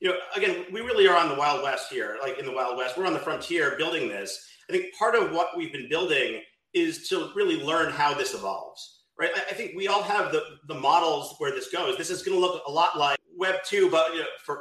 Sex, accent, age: male, American, 40-59